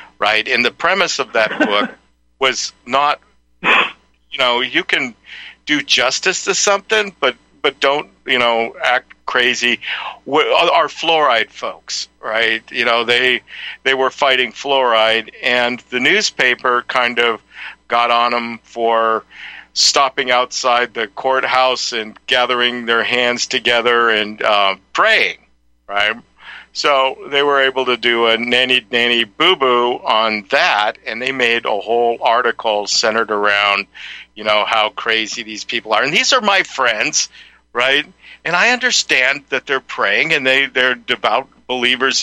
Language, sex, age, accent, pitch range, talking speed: English, male, 50-69, American, 115-130 Hz, 140 wpm